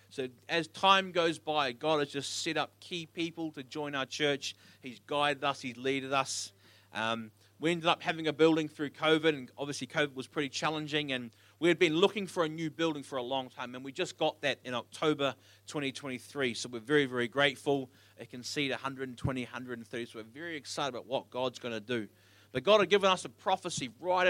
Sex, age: male, 30-49